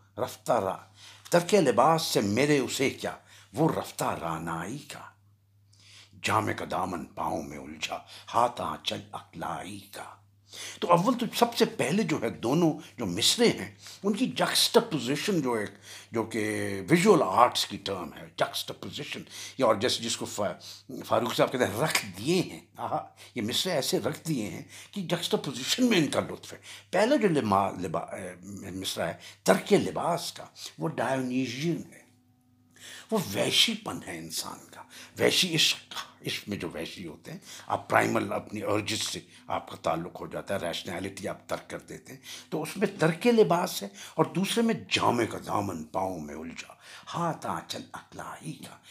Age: 60-79